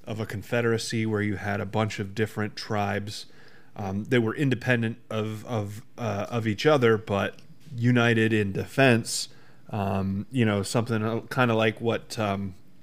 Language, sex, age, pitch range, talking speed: English, male, 30-49, 105-130 Hz, 160 wpm